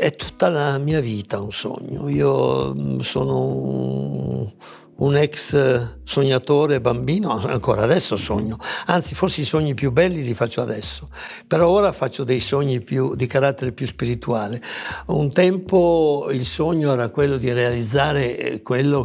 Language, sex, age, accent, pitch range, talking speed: Italian, male, 60-79, native, 115-140 Hz, 140 wpm